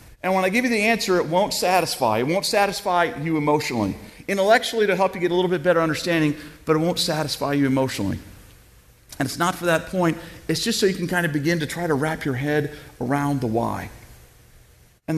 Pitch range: 115-185 Hz